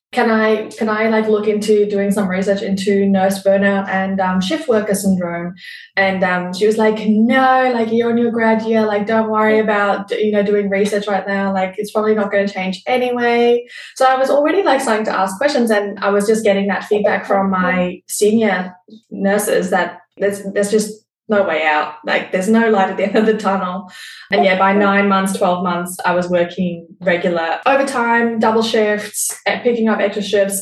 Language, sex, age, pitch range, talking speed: English, female, 10-29, 195-225 Hz, 200 wpm